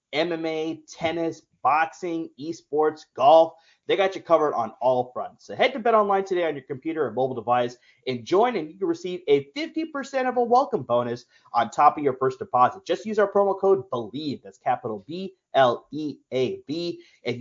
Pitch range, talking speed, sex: 125-180 Hz, 175 wpm, male